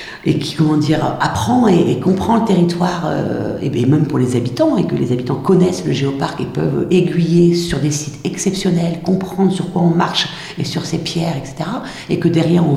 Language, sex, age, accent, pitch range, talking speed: French, female, 50-69, French, 165-225 Hz, 200 wpm